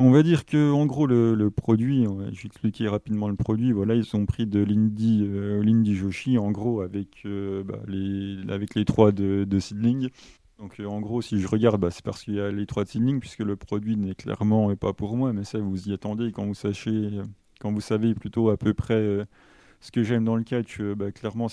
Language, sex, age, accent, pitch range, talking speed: French, male, 30-49, French, 100-115 Hz, 235 wpm